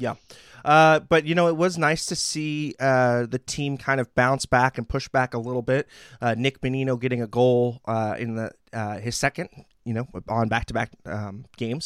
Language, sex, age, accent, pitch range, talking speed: English, male, 20-39, American, 115-135 Hz, 210 wpm